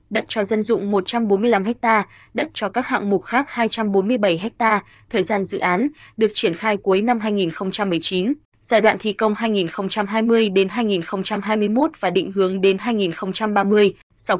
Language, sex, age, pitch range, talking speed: Vietnamese, female, 20-39, 195-230 Hz, 150 wpm